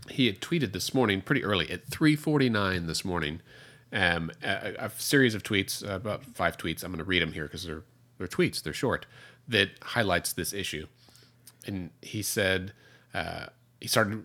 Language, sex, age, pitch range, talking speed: English, male, 40-59, 95-125 Hz, 180 wpm